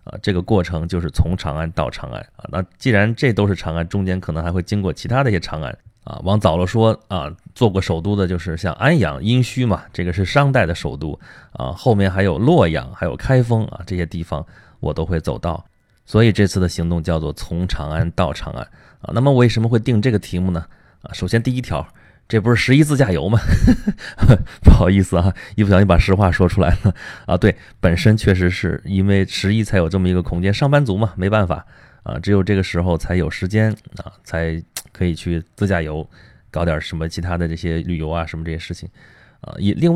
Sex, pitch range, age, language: male, 85-105 Hz, 20-39, Chinese